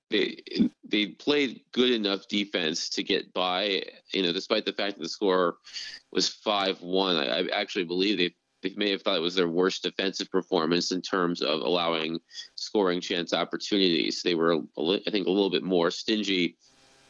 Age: 20-39